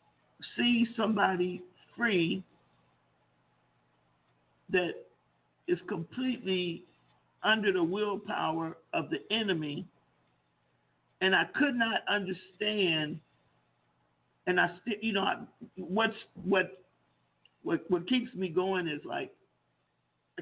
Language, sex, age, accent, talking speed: English, male, 50-69, American, 95 wpm